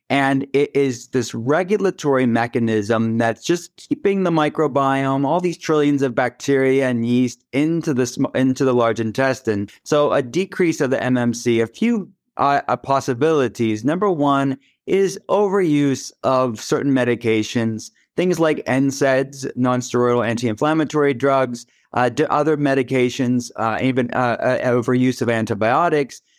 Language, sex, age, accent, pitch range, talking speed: Spanish, male, 30-49, American, 115-140 Hz, 125 wpm